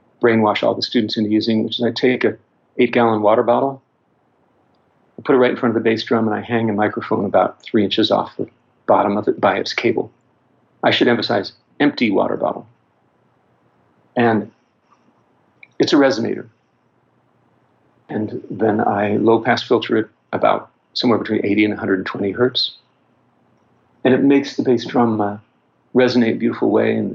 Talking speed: 165 wpm